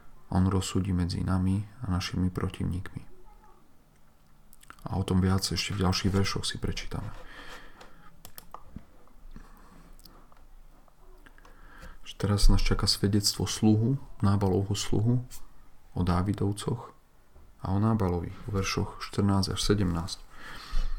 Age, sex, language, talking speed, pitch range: 40-59, male, Slovak, 95 wpm, 95-105 Hz